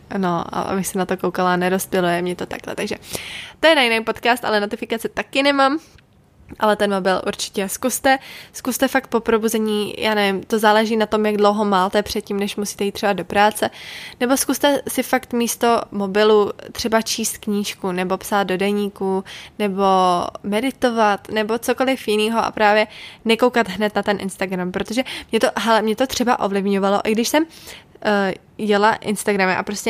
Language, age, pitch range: Czech, 20-39, 205-245 Hz